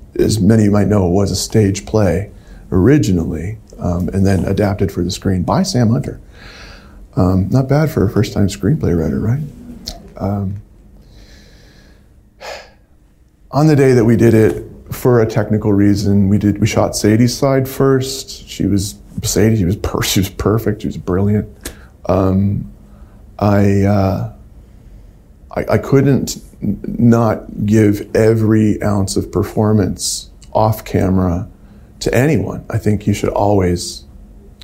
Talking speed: 145 wpm